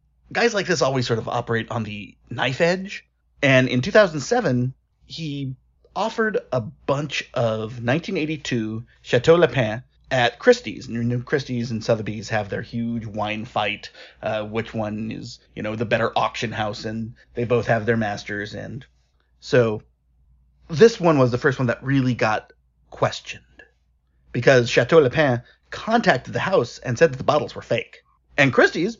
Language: English